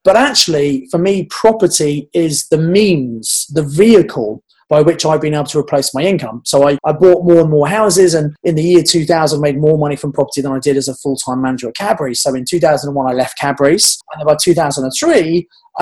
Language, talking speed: English, 215 wpm